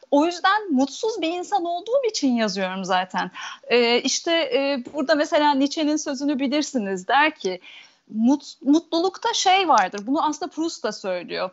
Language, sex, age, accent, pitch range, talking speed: Turkish, female, 30-49, native, 260-360 Hz, 145 wpm